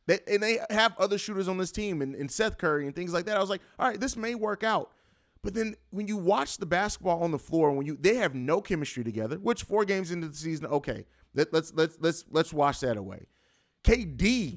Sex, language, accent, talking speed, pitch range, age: male, English, American, 245 wpm, 140-195 Hz, 30-49